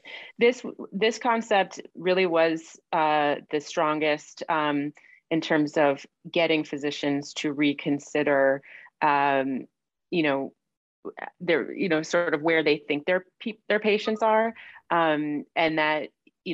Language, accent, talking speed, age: English, American, 130 wpm, 30-49